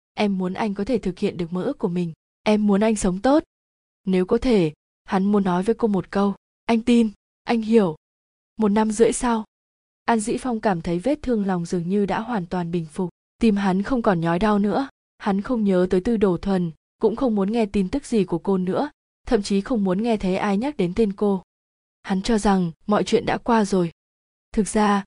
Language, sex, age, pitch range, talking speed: Vietnamese, female, 20-39, 185-230 Hz, 225 wpm